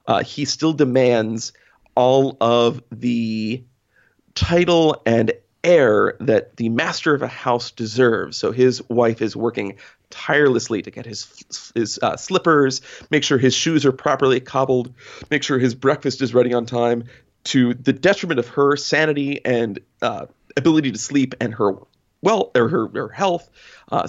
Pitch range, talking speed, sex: 120-155 Hz, 155 wpm, male